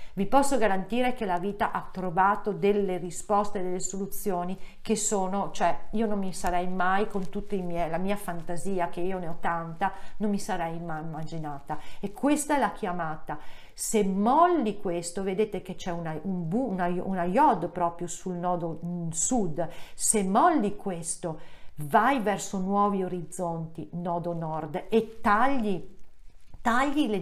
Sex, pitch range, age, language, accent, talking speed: female, 175-225 Hz, 40-59, Italian, native, 160 wpm